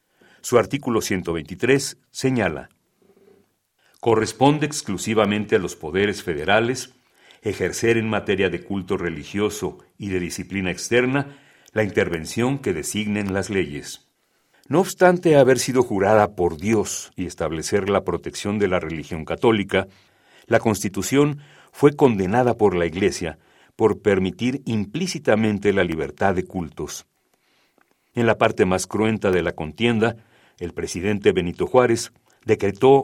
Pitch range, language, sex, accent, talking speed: 95-125 Hz, Spanish, male, Mexican, 125 wpm